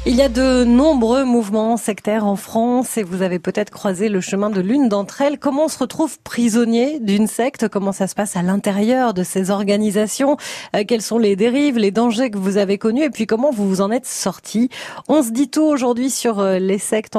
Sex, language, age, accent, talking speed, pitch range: female, French, 30-49, French, 215 wpm, 205-255 Hz